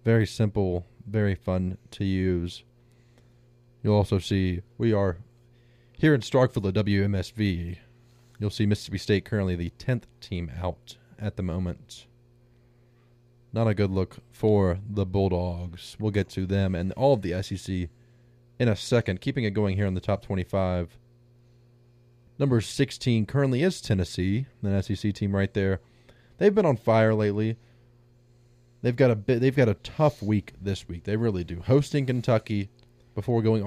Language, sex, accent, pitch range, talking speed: English, male, American, 100-120 Hz, 155 wpm